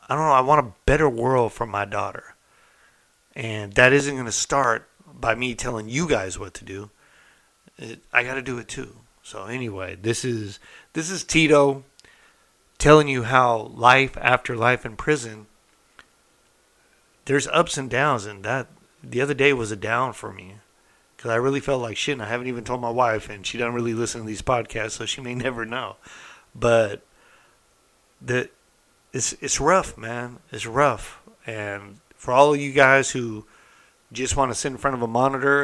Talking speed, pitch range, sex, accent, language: 185 wpm, 110-135 Hz, male, American, English